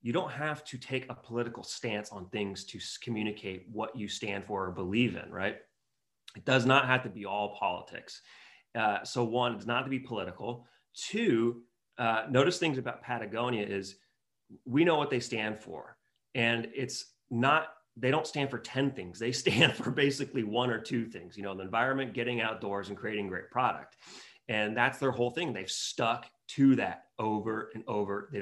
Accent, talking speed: American, 190 wpm